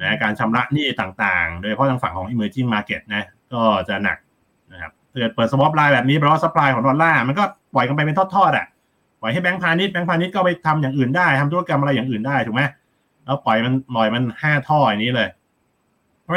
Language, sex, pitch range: Thai, male, 135-175 Hz